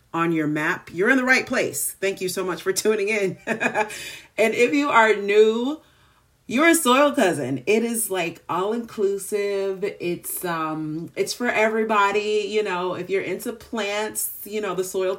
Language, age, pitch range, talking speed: English, 40-59, 150-210 Hz, 170 wpm